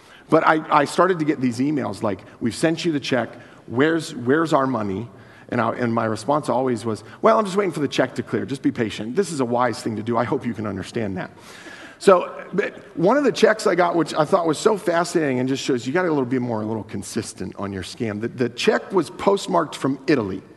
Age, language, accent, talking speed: 50-69, English, American, 255 wpm